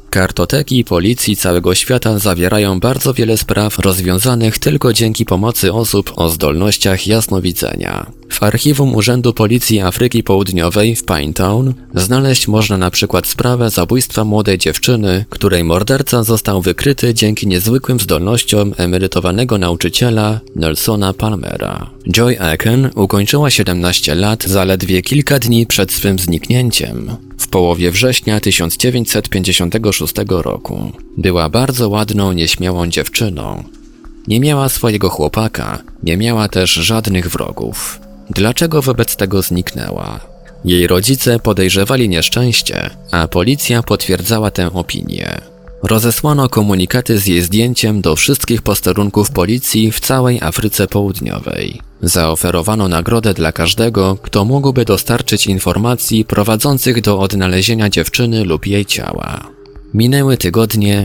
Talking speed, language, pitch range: 115 wpm, Polish, 90-115 Hz